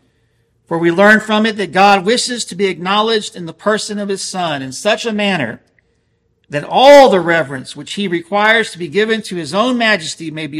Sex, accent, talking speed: male, American, 210 wpm